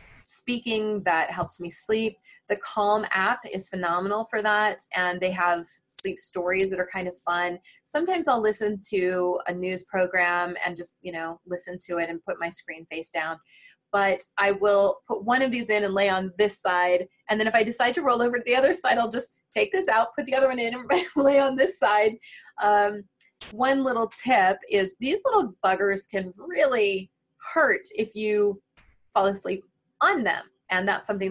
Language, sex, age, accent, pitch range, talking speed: English, female, 20-39, American, 180-220 Hz, 195 wpm